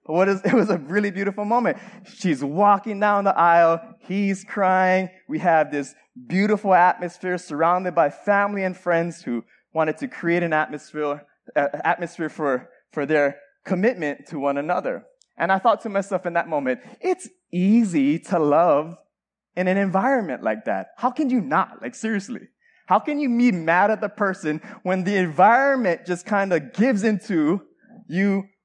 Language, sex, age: English, male, 20-39